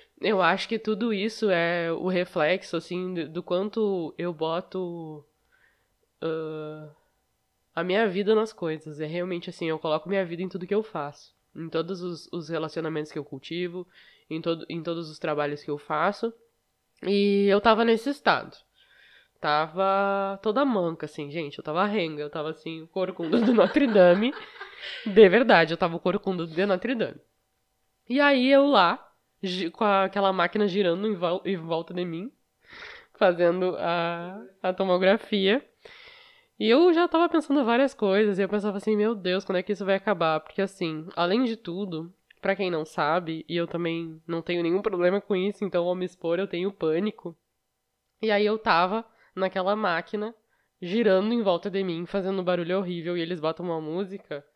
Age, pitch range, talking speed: 20-39, 165-205 Hz, 170 wpm